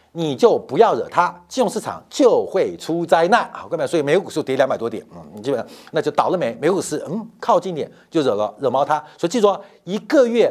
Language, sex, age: Chinese, male, 50-69